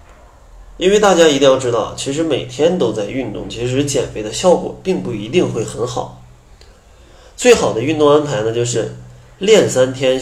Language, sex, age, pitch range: Chinese, male, 20-39, 105-145 Hz